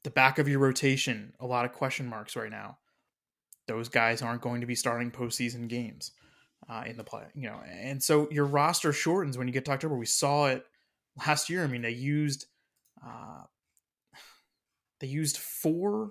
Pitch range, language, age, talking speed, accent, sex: 120-145 Hz, English, 20-39, 190 wpm, American, male